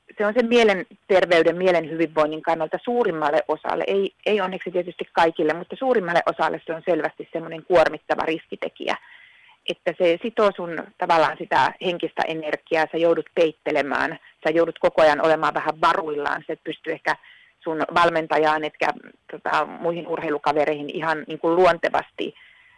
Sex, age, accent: female, 30-49, native